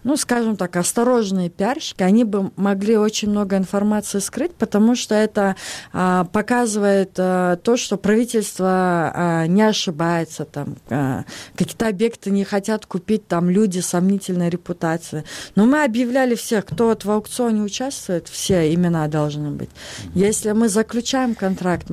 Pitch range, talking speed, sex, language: 170-215 Hz, 140 wpm, female, Russian